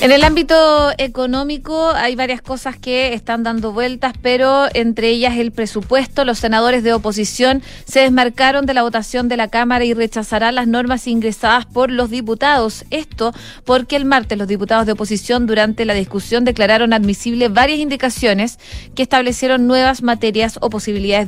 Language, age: Spanish, 30-49